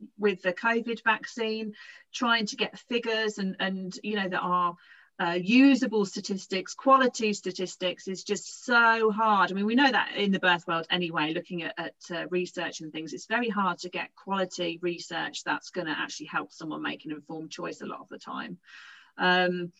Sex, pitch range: female, 185-235 Hz